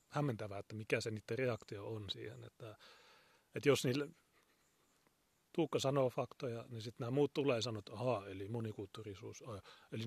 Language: Finnish